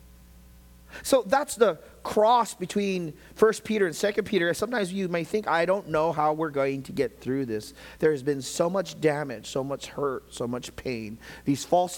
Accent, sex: American, male